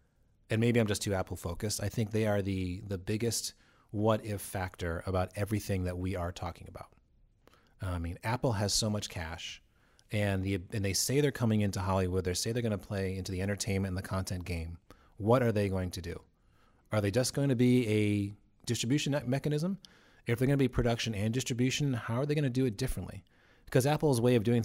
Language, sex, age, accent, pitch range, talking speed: English, male, 30-49, American, 95-120 Hz, 210 wpm